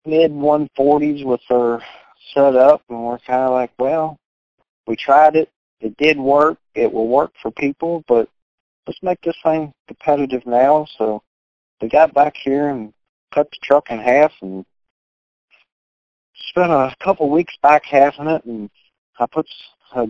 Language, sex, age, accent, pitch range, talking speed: English, male, 40-59, American, 120-150 Hz, 155 wpm